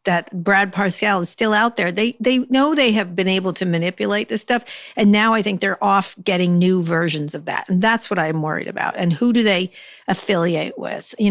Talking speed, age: 225 wpm, 50-69